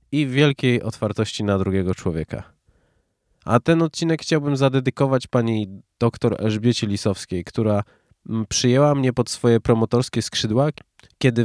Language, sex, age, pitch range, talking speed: Polish, male, 20-39, 105-140 Hz, 120 wpm